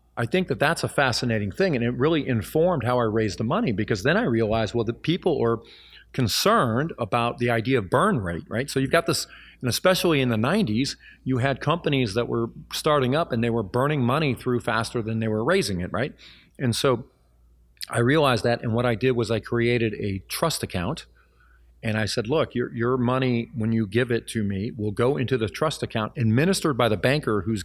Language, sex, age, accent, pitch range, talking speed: English, male, 40-59, American, 110-135 Hz, 215 wpm